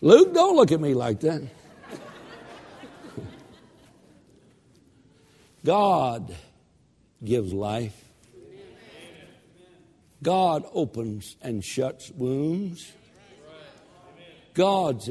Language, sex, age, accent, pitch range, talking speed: English, male, 60-79, American, 120-160 Hz, 65 wpm